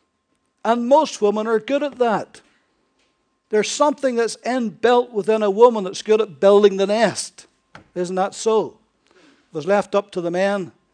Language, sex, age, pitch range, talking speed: English, male, 60-79, 160-205 Hz, 165 wpm